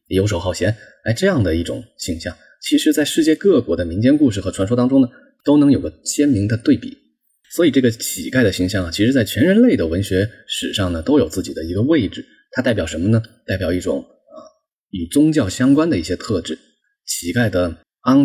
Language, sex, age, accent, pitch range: Chinese, male, 20-39, native, 90-120 Hz